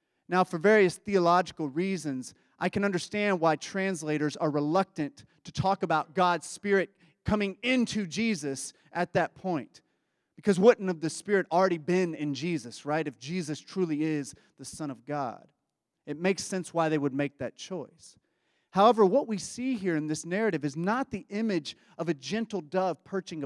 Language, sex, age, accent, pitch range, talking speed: English, male, 30-49, American, 150-195 Hz, 170 wpm